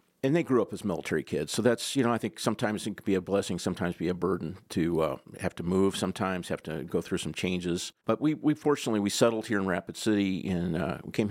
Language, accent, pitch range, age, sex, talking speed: English, American, 90-105 Hz, 50-69, male, 255 wpm